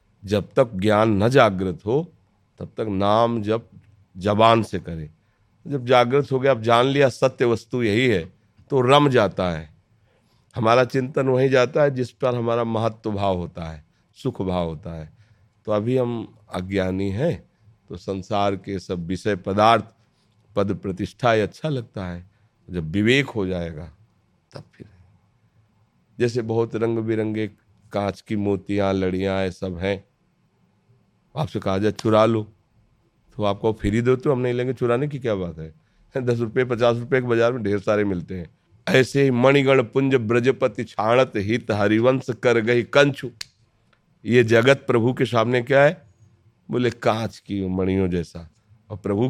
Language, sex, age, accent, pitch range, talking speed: Hindi, male, 40-59, native, 100-125 Hz, 160 wpm